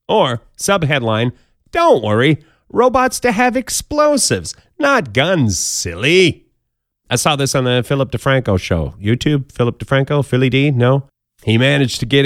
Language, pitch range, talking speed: English, 115-165 Hz, 140 wpm